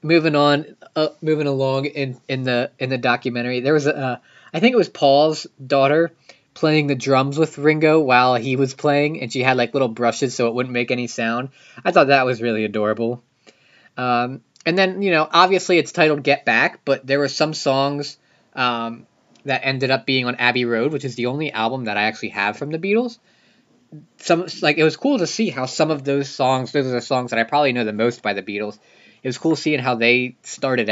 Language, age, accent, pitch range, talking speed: English, 20-39, American, 120-160 Hz, 225 wpm